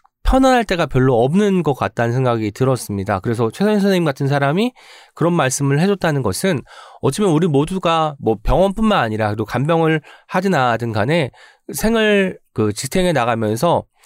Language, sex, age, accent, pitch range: Korean, male, 20-39, native, 120-185 Hz